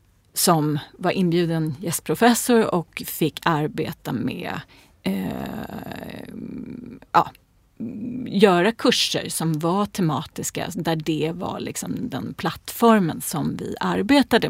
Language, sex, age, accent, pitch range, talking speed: Swedish, female, 30-49, native, 155-220 Hz, 90 wpm